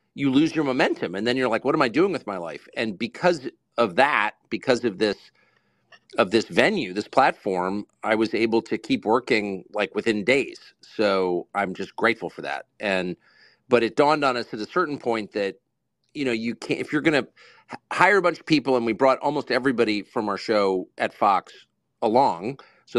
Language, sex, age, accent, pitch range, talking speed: English, male, 50-69, American, 110-140 Hz, 200 wpm